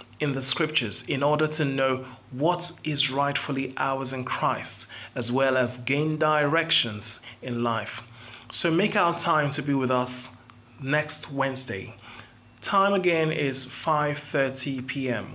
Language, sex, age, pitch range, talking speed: English, male, 30-49, 120-155 Hz, 140 wpm